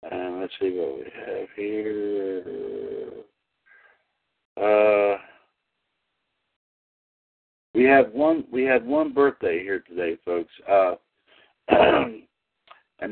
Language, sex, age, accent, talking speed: English, male, 60-79, American, 95 wpm